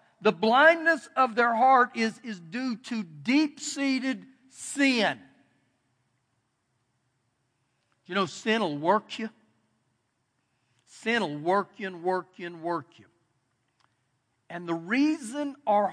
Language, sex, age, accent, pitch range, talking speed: English, male, 60-79, American, 125-195 Hz, 115 wpm